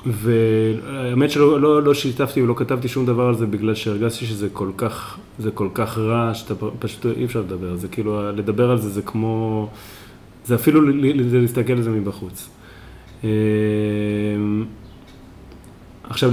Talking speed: 145 wpm